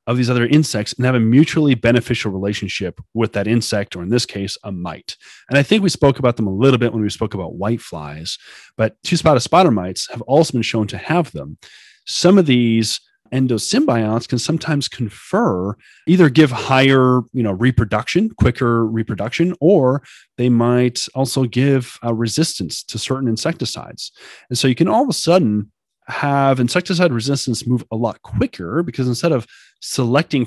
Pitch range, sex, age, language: 105-135 Hz, male, 30-49, English